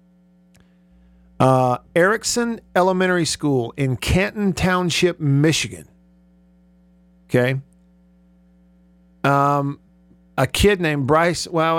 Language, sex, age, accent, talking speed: English, male, 50-69, American, 75 wpm